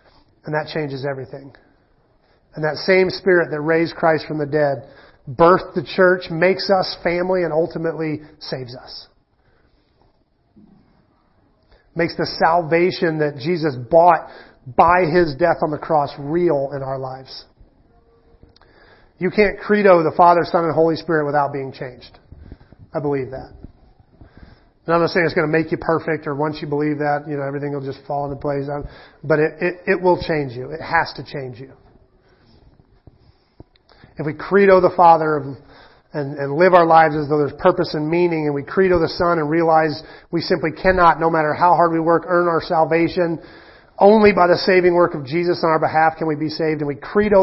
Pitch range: 150-175 Hz